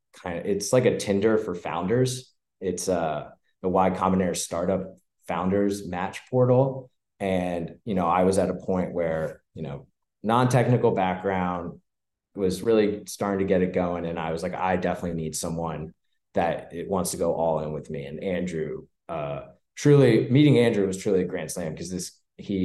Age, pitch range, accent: 20-39, 85-100 Hz, American